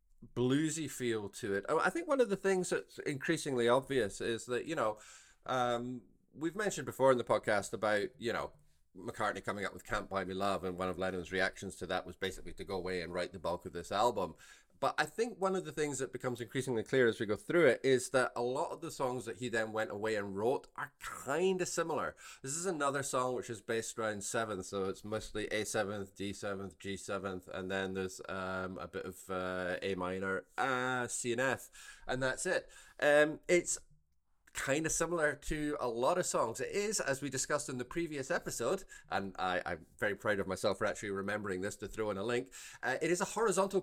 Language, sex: English, male